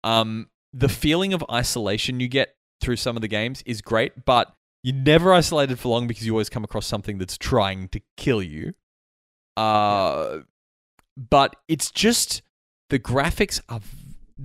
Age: 20-39